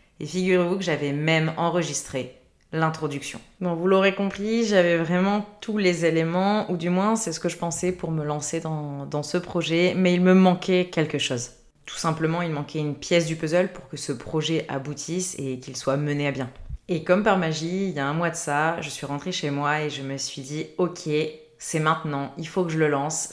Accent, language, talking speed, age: French, French, 220 wpm, 20-39